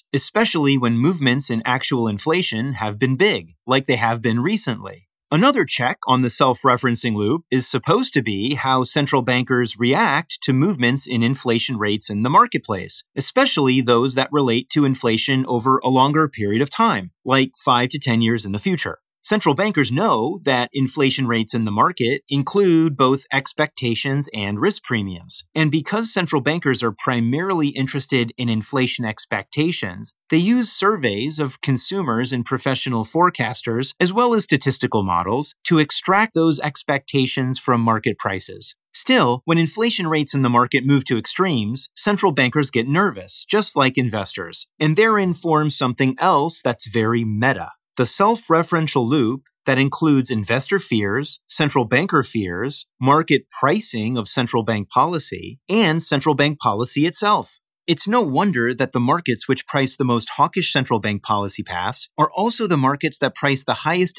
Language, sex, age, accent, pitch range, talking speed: English, male, 30-49, American, 120-155 Hz, 160 wpm